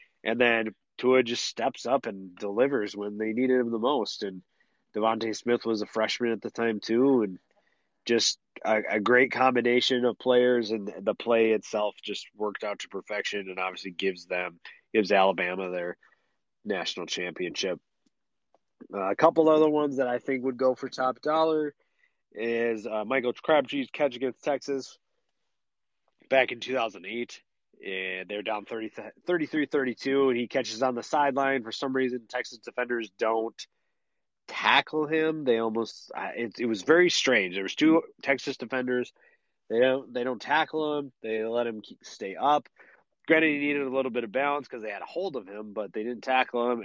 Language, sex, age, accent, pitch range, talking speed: English, male, 30-49, American, 105-135 Hz, 175 wpm